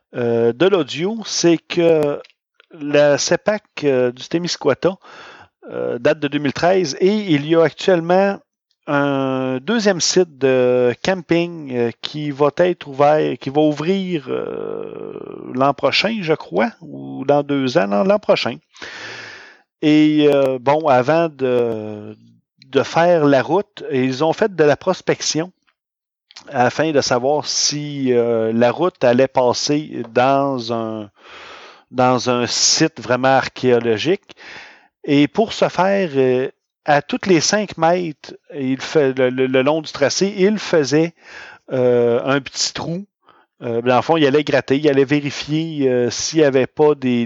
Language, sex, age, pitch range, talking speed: English, male, 40-59, 125-170 Hz, 145 wpm